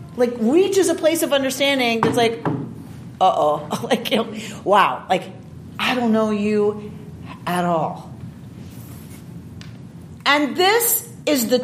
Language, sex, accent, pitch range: English, female, American, 210-280 Hz